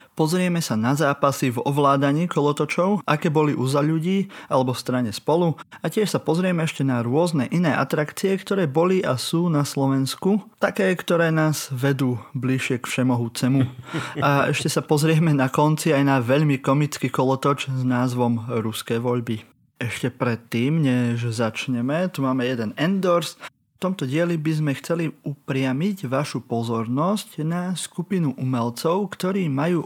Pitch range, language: 130-165 Hz, Slovak